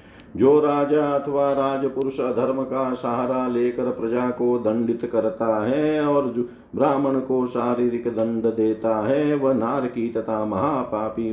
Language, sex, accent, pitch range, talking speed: Hindi, male, native, 115-145 Hz, 125 wpm